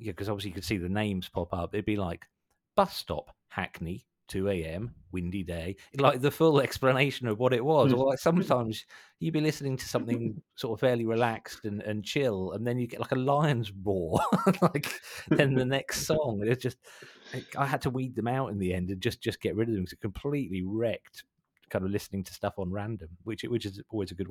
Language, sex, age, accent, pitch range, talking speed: English, male, 40-59, British, 90-120 Hz, 220 wpm